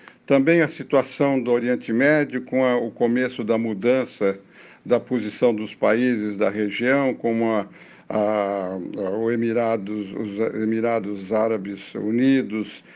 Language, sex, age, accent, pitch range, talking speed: Portuguese, male, 60-79, Brazilian, 115-135 Hz, 125 wpm